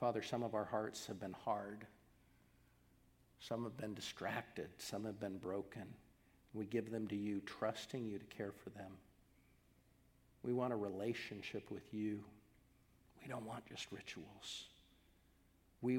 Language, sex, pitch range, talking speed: English, male, 100-145 Hz, 145 wpm